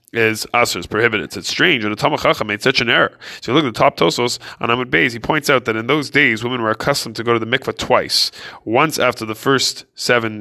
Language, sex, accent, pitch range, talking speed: English, male, American, 110-140 Hz, 255 wpm